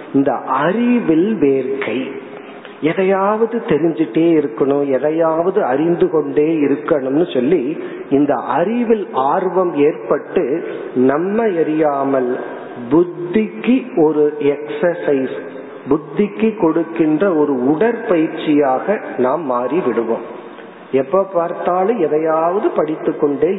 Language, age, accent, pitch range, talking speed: Tamil, 40-59, native, 145-205 Hz, 60 wpm